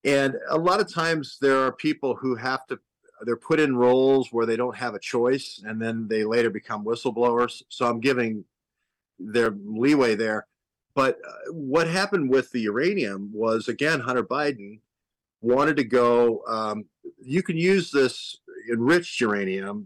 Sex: male